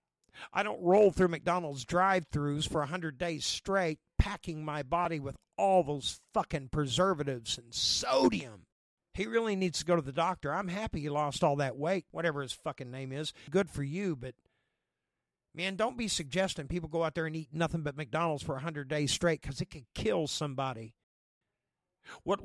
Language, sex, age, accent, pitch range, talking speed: English, male, 50-69, American, 145-185 Hz, 180 wpm